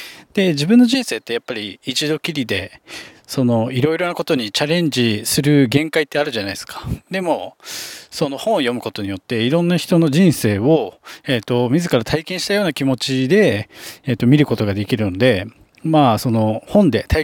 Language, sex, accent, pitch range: Japanese, male, native, 115-170 Hz